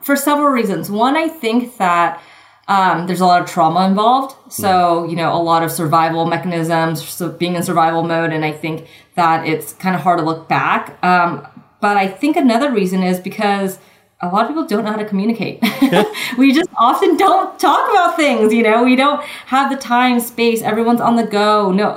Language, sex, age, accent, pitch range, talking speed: English, female, 20-39, American, 175-235 Hz, 205 wpm